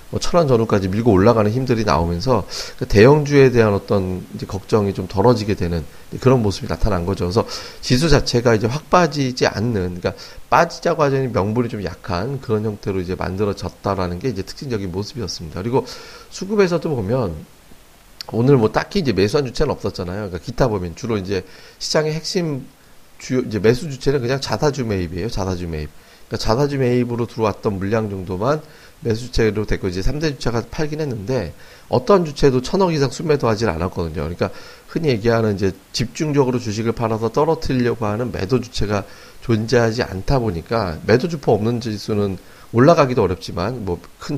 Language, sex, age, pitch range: Korean, male, 40-59, 95-130 Hz